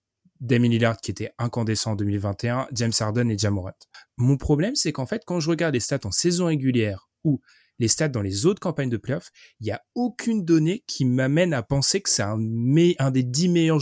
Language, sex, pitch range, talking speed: French, male, 115-160 Hz, 215 wpm